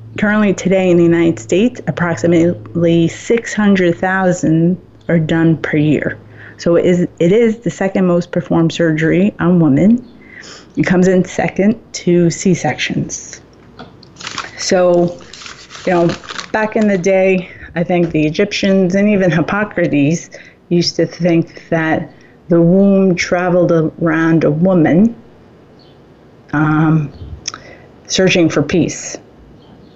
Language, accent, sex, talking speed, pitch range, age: English, American, female, 115 wpm, 160-190 Hz, 30-49